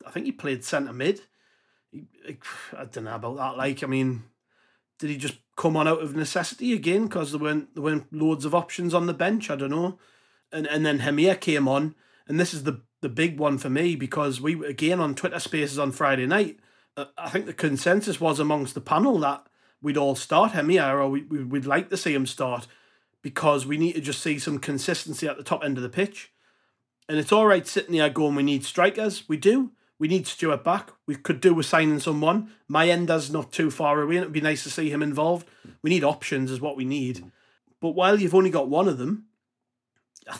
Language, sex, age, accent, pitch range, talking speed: English, male, 30-49, British, 140-175 Hz, 225 wpm